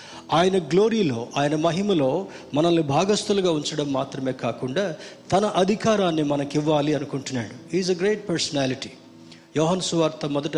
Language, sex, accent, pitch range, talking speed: Telugu, male, native, 140-180 Hz, 115 wpm